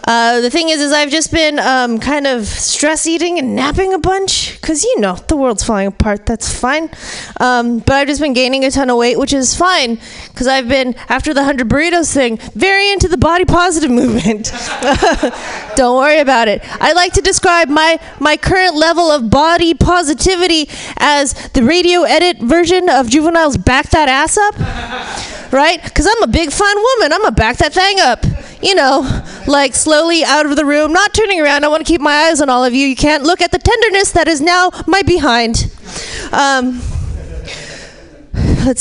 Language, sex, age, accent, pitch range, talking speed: English, female, 20-39, American, 265-350 Hz, 195 wpm